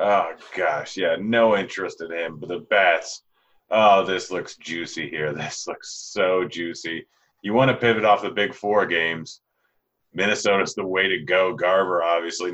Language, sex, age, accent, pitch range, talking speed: English, male, 30-49, American, 90-110 Hz, 170 wpm